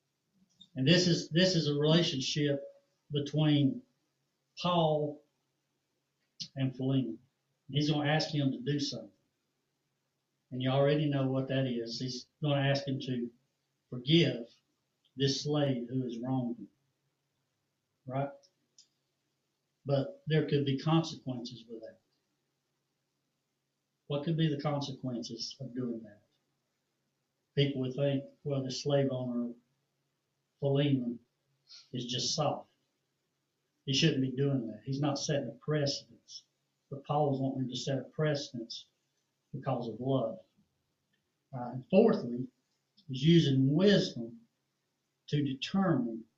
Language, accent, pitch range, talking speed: English, American, 130-150 Hz, 120 wpm